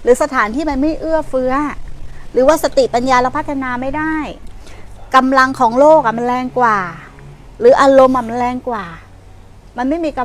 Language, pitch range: Thai, 235-295 Hz